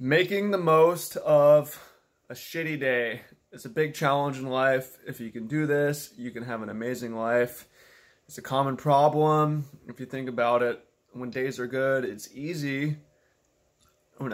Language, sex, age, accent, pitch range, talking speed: English, male, 20-39, American, 115-140 Hz, 165 wpm